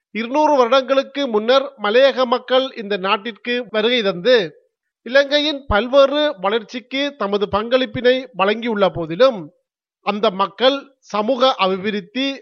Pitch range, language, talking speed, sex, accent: 205-255 Hz, Tamil, 90 wpm, male, native